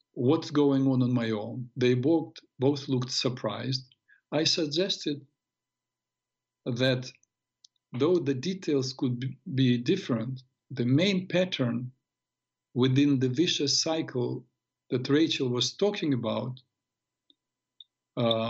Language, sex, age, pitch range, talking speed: English, male, 50-69, 125-145 Hz, 105 wpm